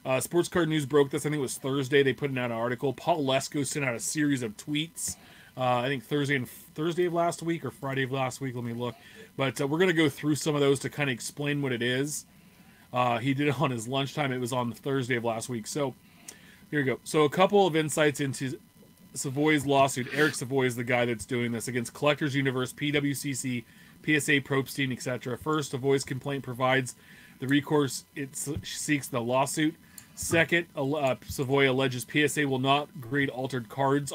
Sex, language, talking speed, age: male, English, 205 wpm, 30-49